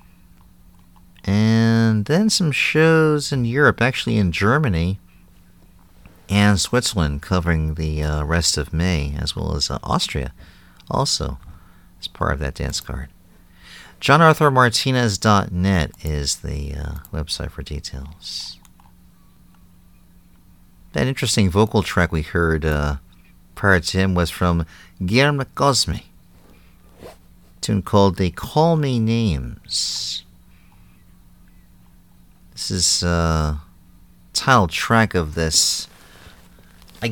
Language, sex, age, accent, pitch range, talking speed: English, male, 50-69, American, 80-100 Hz, 105 wpm